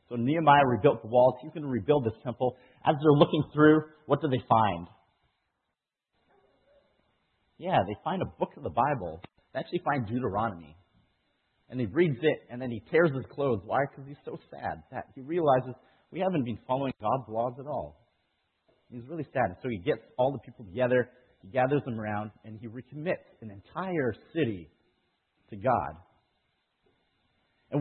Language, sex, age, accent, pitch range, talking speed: English, male, 40-59, American, 105-150 Hz, 175 wpm